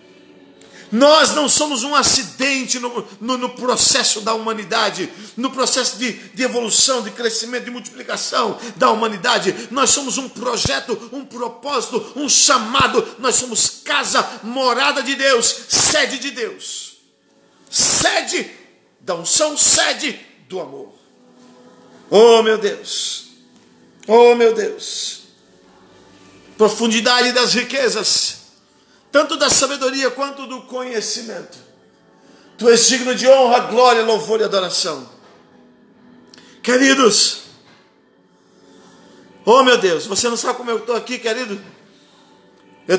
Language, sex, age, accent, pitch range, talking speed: Portuguese, male, 50-69, Brazilian, 225-270 Hz, 115 wpm